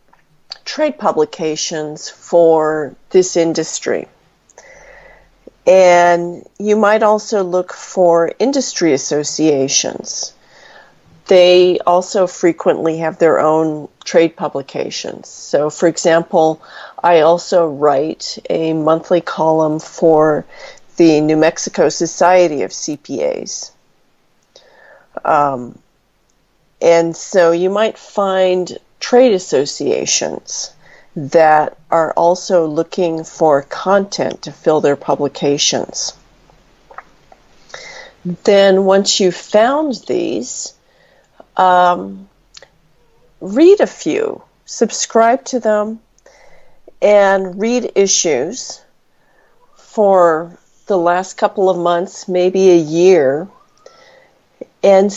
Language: English